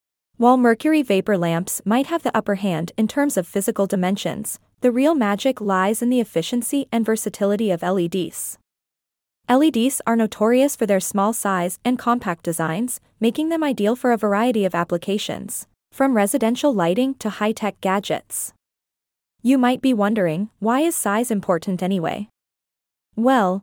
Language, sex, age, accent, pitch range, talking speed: English, female, 20-39, American, 200-250 Hz, 150 wpm